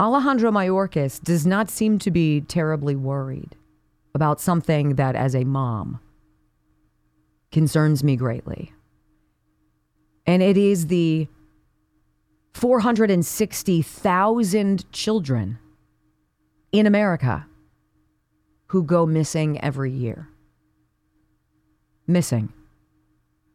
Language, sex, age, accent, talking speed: English, female, 40-59, American, 80 wpm